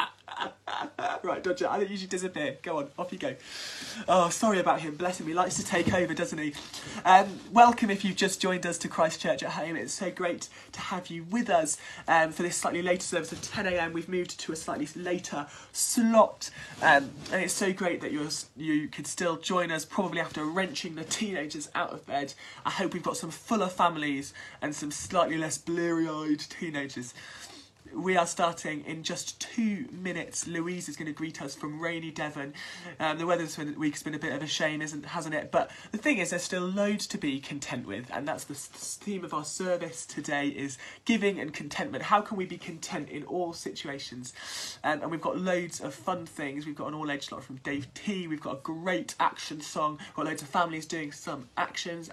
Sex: male